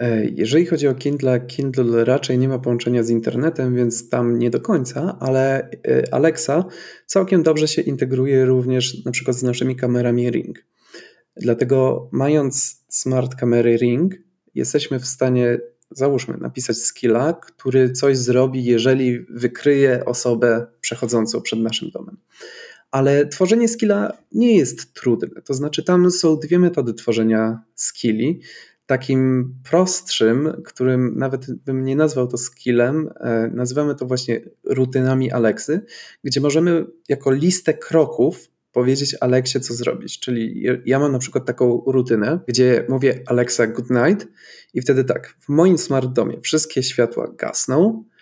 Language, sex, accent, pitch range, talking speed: Polish, male, native, 120-145 Hz, 135 wpm